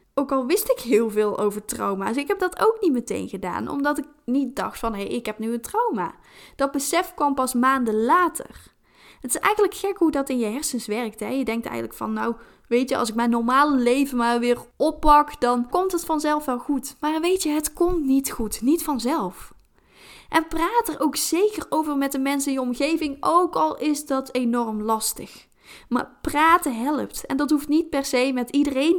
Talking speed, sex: 205 wpm, female